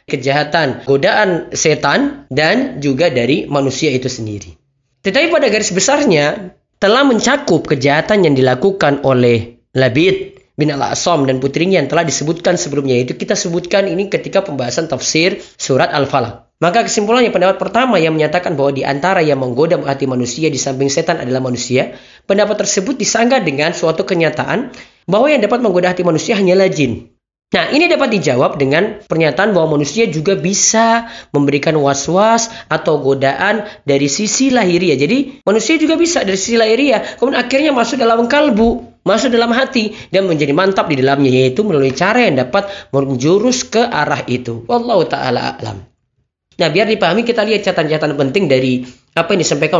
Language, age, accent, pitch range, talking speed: Indonesian, 20-39, native, 140-210 Hz, 155 wpm